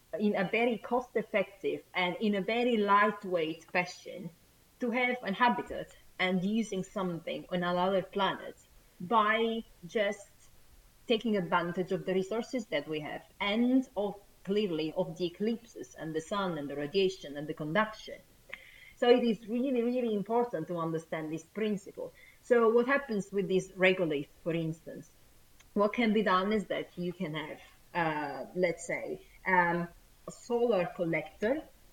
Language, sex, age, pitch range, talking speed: English, female, 30-49, 170-210 Hz, 145 wpm